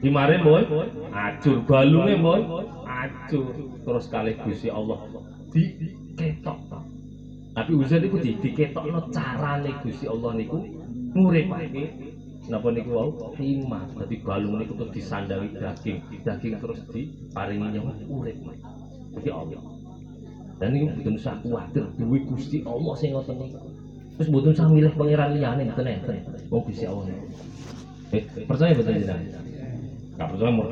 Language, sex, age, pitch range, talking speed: Indonesian, male, 30-49, 115-160 Hz, 135 wpm